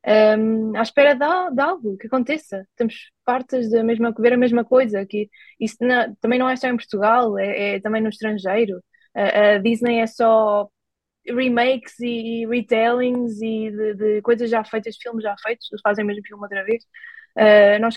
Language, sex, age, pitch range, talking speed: Portuguese, female, 20-39, 210-250 Hz, 195 wpm